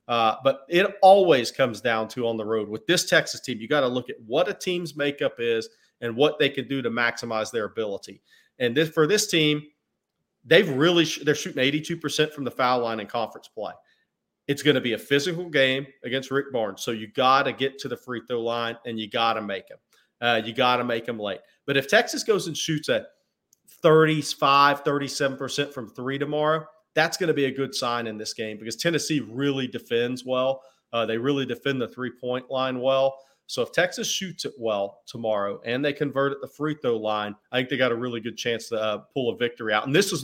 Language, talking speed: English, 225 wpm